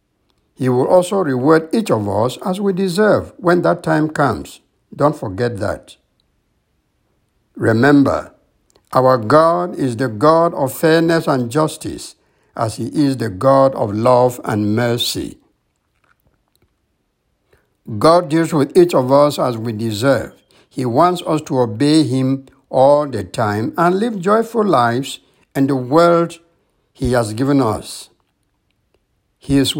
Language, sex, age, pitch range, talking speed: English, male, 60-79, 120-160 Hz, 135 wpm